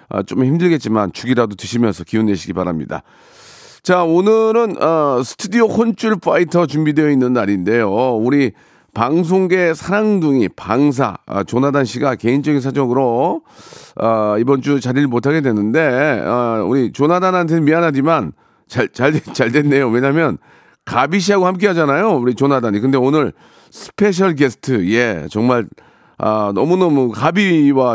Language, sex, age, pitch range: Korean, male, 40-59, 115-190 Hz